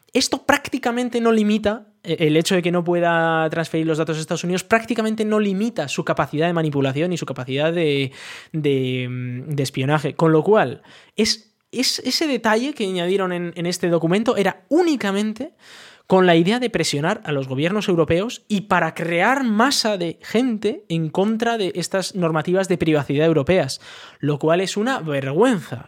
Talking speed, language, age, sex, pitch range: 170 wpm, Spanish, 20-39, male, 160-215 Hz